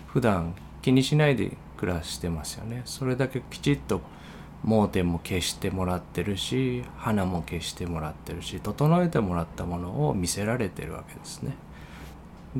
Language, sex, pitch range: Japanese, male, 85-135 Hz